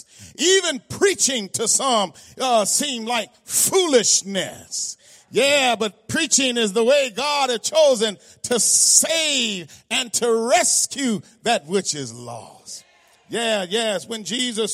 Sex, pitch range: male, 210-265 Hz